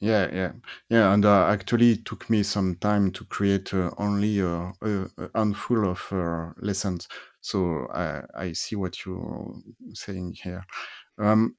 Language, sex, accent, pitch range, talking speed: English, male, French, 95-115 Hz, 155 wpm